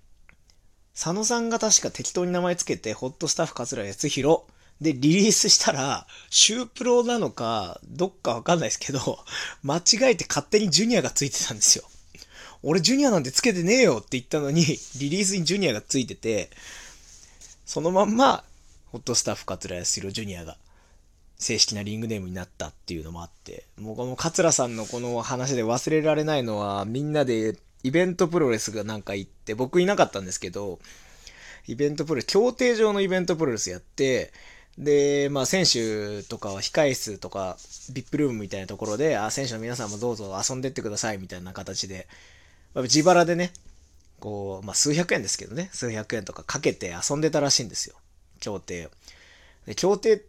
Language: Japanese